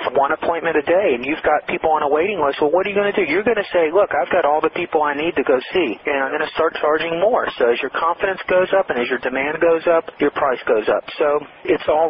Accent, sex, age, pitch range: American, male, 40-59, 135-160 Hz